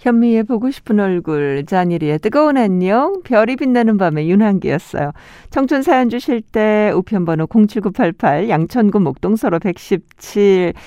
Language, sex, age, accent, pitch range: Korean, female, 60-79, native, 170-225 Hz